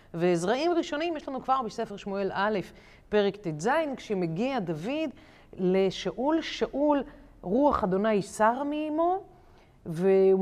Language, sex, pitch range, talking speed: Hebrew, female, 190-265 Hz, 110 wpm